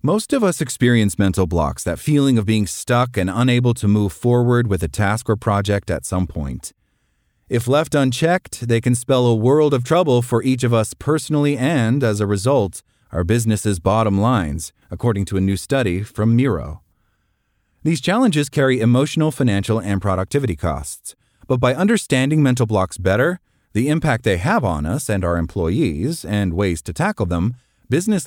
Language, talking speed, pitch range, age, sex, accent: English, 175 wpm, 95-135 Hz, 30-49, male, American